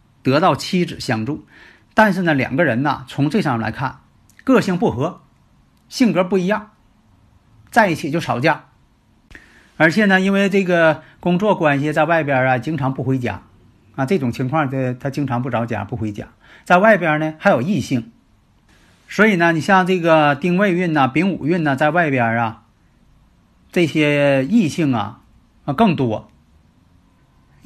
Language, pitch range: Chinese, 115-170 Hz